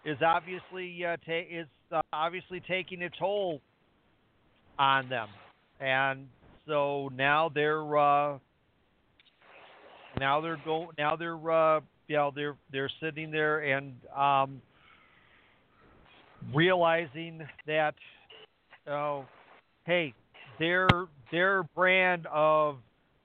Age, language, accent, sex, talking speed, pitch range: 50-69, English, American, male, 105 wpm, 135-160 Hz